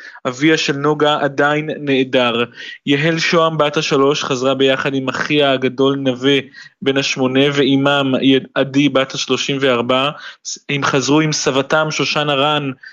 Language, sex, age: Hebrew, male, 20-39